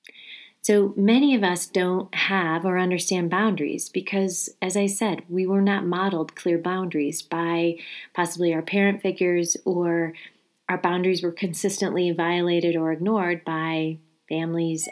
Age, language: 30-49, English